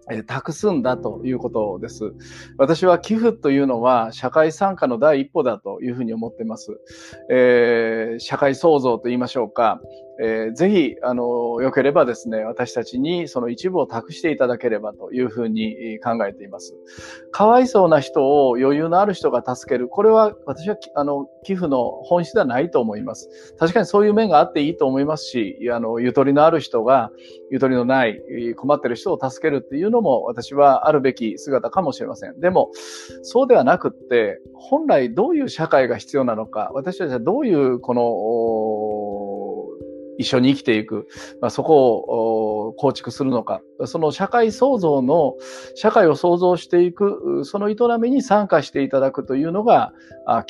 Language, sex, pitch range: Japanese, male, 115-175 Hz